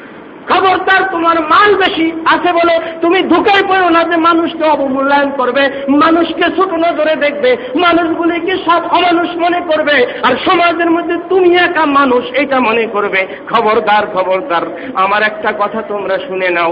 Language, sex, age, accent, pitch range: Bengali, male, 50-69, native, 225-340 Hz